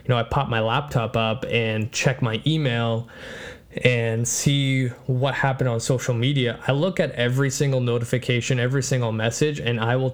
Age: 20-39